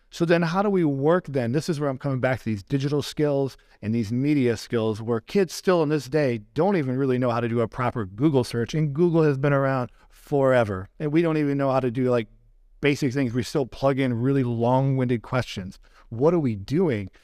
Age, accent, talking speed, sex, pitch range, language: 40-59, American, 230 wpm, male, 120-160 Hz, English